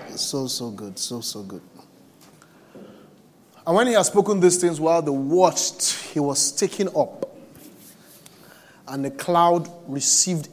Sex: male